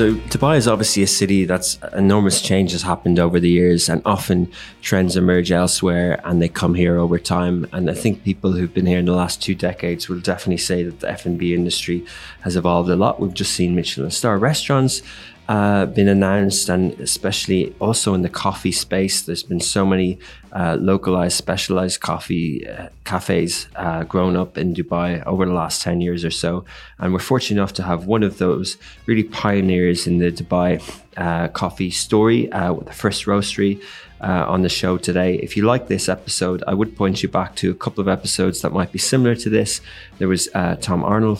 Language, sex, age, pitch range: English, male, 20-39, 90-100 Hz